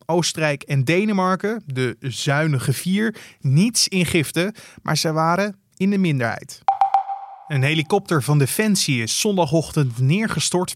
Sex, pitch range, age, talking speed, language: male, 140-180 Hz, 20-39, 115 wpm, Dutch